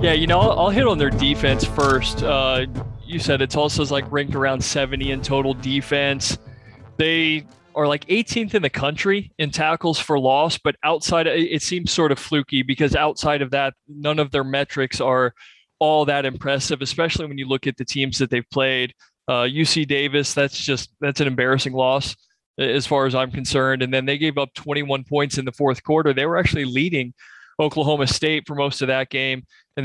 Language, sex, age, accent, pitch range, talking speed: English, male, 20-39, American, 130-150 Hz, 200 wpm